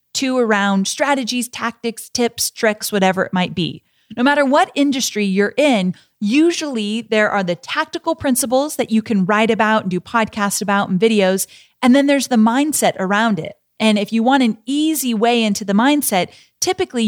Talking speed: 180 wpm